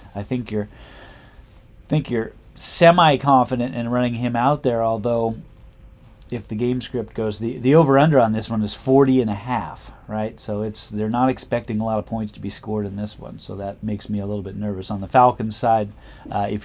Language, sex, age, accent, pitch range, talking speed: English, male, 40-59, American, 105-130 Hz, 215 wpm